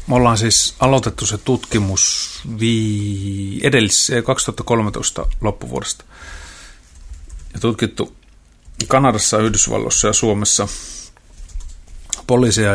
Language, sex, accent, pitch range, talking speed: Finnish, male, native, 95-110 Hz, 75 wpm